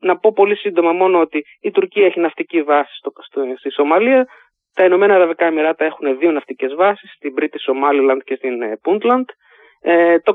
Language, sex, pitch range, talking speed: Greek, male, 155-230 Hz, 175 wpm